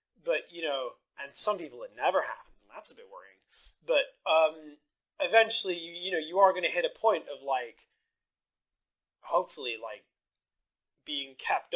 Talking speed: 165 wpm